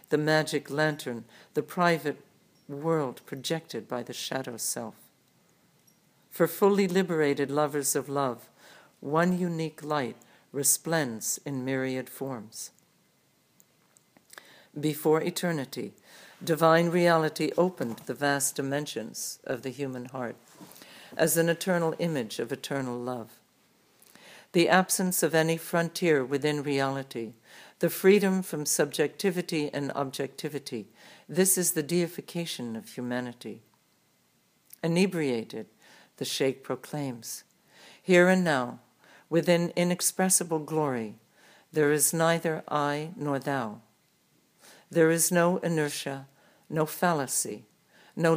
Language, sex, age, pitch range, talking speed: English, female, 60-79, 135-170 Hz, 105 wpm